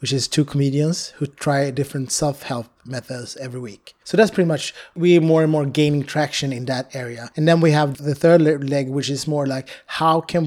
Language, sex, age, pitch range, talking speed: Turkish, male, 30-49, 130-155 Hz, 210 wpm